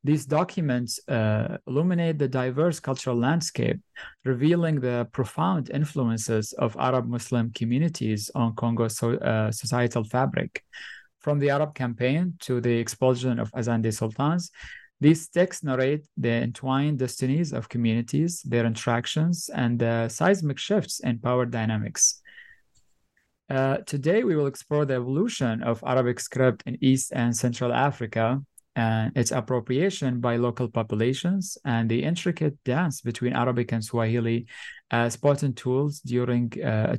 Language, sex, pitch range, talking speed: English, male, 120-145 Hz, 135 wpm